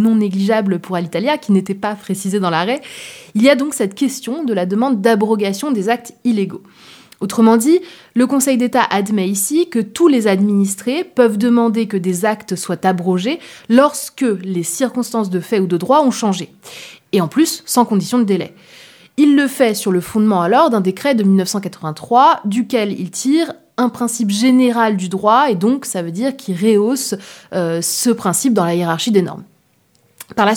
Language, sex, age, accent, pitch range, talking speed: French, female, 20-39, French, 185-240 Hz, 185 wpm